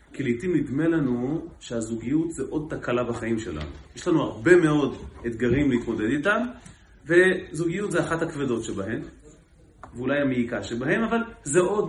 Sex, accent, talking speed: male, native, 140 wpm